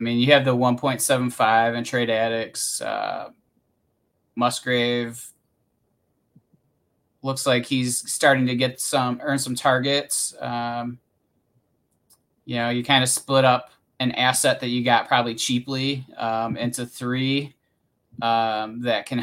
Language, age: English, 20-39